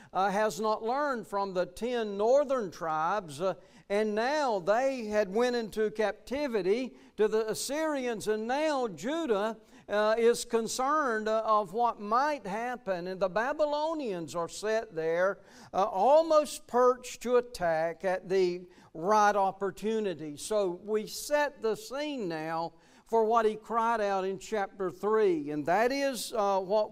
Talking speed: 145 wpm